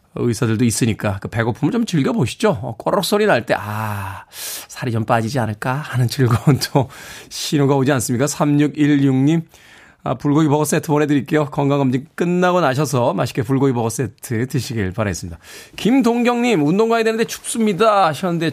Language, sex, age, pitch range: Korean, male, 20-39, 115-170 Hz